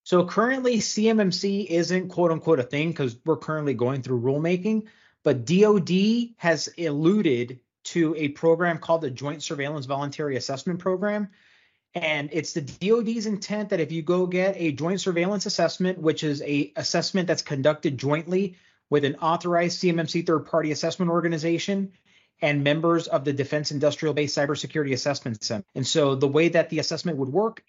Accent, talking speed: American, 160 wpm